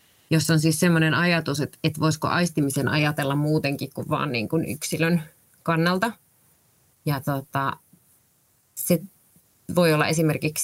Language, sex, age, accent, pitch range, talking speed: Finnish, female, 20-39, native, 140-165 Hz, 105 wpm